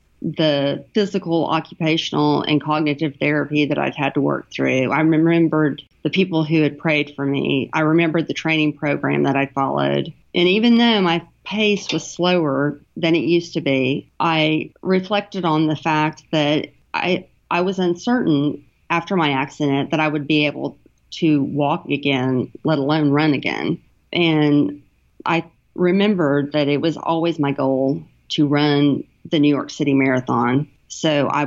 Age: 40-59